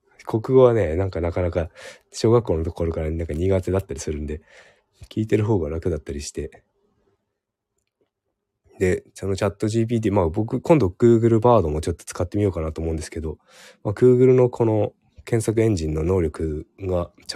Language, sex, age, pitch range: Japanese, male, 20-39, 80-110 Hz